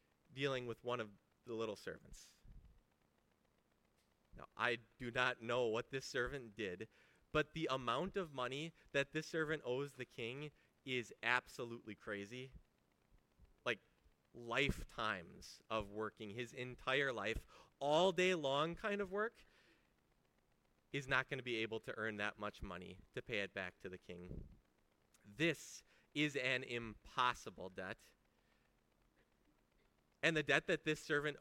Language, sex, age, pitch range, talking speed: English, male, 30-49, 100-145 Hz, 140 wpm